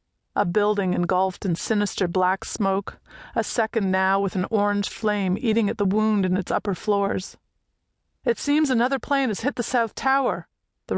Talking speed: 175 wpm